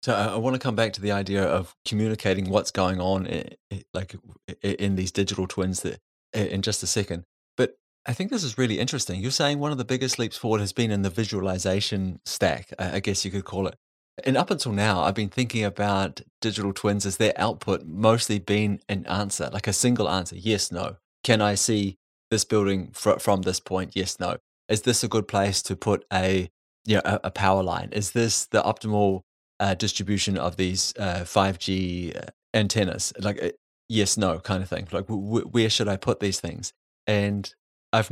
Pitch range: 95-110 Hz